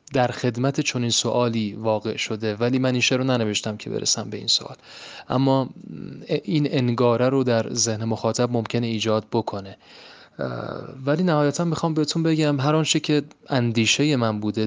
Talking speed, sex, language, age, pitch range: 145 wpm, male, Persian, 30-49, 110-130 Hz